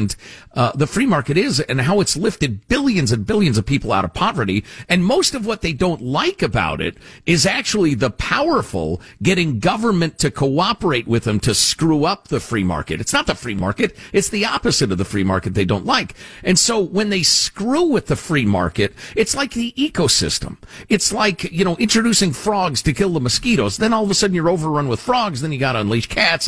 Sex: male